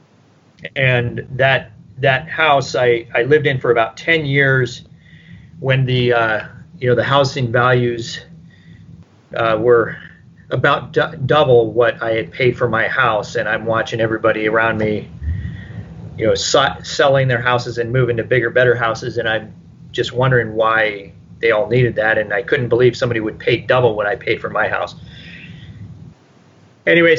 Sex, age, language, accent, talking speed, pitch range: male, 30-49, English, American, 165 wpm, 115-140 Hz